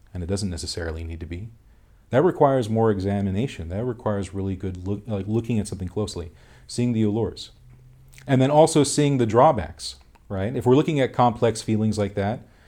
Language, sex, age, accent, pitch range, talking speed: English, male, 40-59, American, 95-115 Hz, 185 wpm